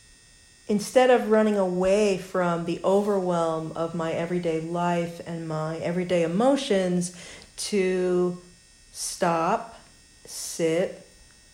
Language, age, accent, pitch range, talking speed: English, 50-69, American, 165-195 Hz, 95 wpm